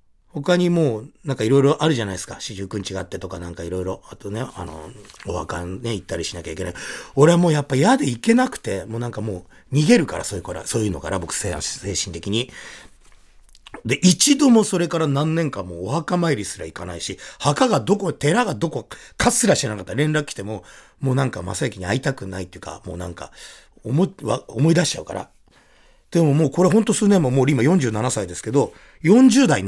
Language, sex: Japanese, male